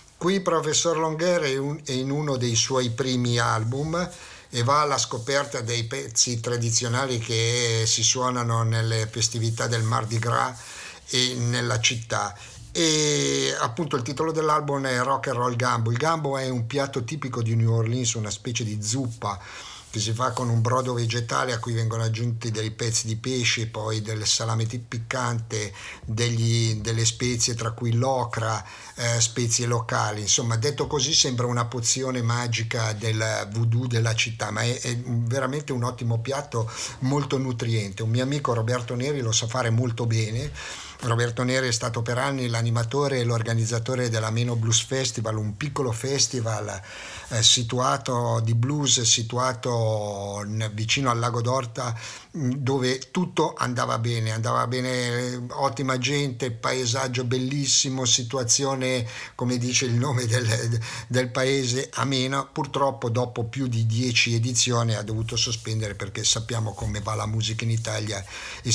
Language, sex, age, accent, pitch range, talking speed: Italian, male, 50-69, native, 115-130 Hz, 145 wpm